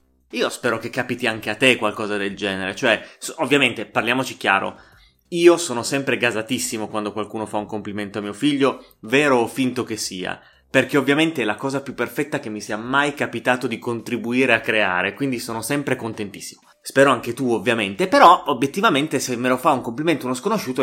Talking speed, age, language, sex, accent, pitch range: 185 wpm, 20-39, Italian, male, native, 110-160 Hz